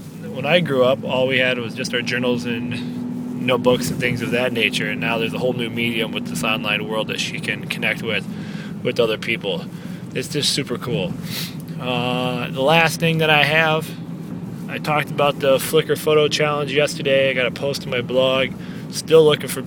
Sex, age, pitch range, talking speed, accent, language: male, 20-39, 130-165 Hz, 200 wpm, American, English